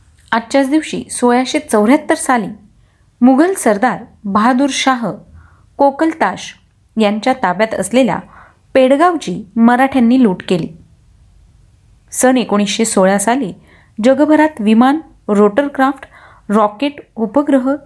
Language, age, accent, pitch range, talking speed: Marathi, 30-49, native, 200-275 Hz, 85 wpm